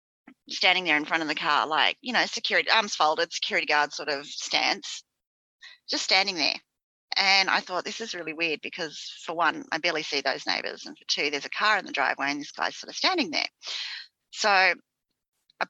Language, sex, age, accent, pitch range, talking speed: English, female, 30-49, Australian, 160-230 Hz, 205 wpm